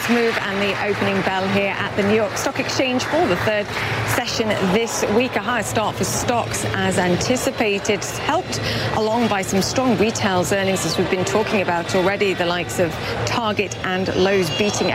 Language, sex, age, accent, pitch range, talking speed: English, female, 40-59, British, 185-220 Hz, 180 wpm